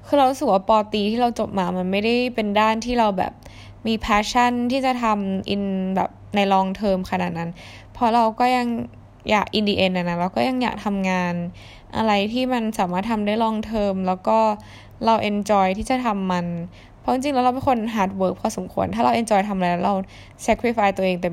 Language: Thai